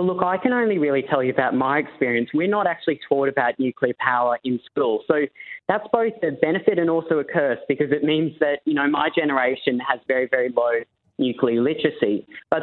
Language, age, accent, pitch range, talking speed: English, 20-39, Australian, 125-160 Hz, 210 wpm